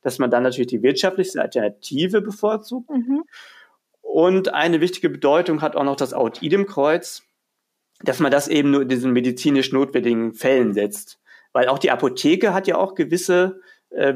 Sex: male